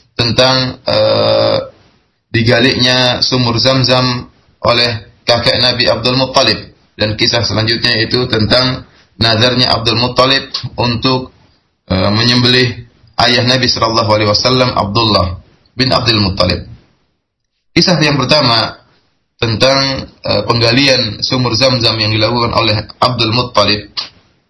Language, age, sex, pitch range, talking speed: Malay, 20-39, male, 110-130 Hz, 110 wpm